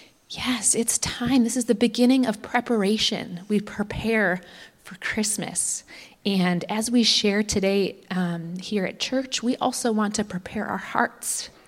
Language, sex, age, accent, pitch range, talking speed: English, female, 30-49, American, 180-245 Hz, 150 wpm